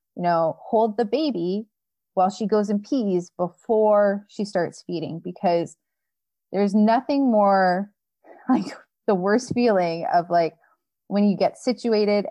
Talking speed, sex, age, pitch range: 135 wpm, female, 30-49, 170-220 Hz